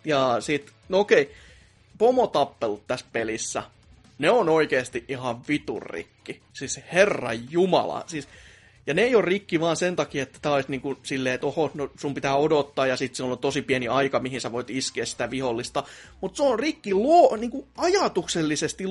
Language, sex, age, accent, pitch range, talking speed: Finnish, male, 30-49, native, 135-200 Hz, 170 wpm